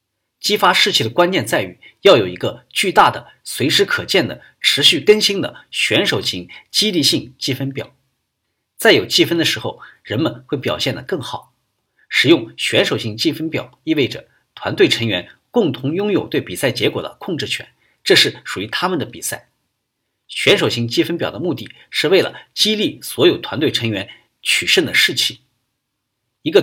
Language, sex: Chinese, male